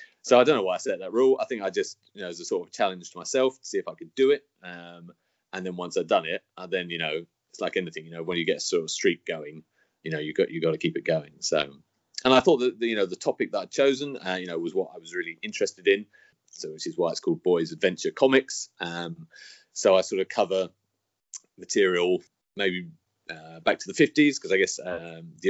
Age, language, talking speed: 30-49, English, 265 wpm